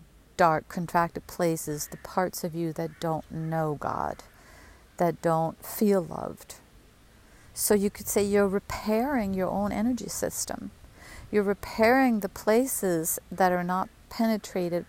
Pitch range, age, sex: 170-200 Hz, 50-69, female